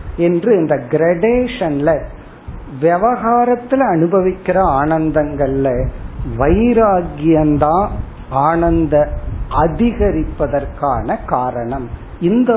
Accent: native